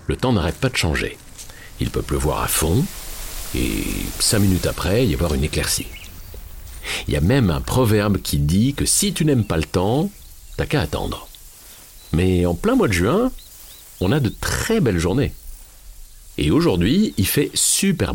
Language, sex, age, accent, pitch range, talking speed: French, male, 50-69, French, 75-100 Hz, 180 wpm